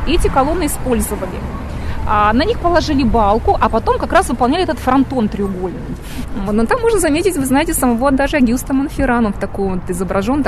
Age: 20-39